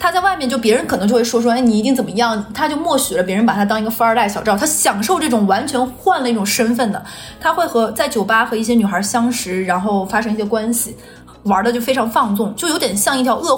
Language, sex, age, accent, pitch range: Chinese, female, 20-39, native, 215-260 Hz